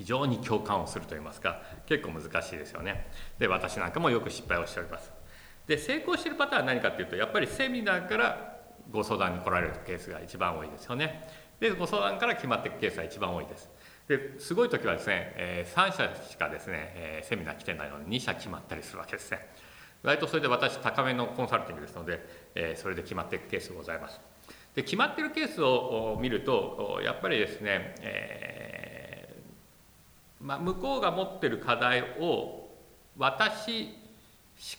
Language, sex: Japanese, male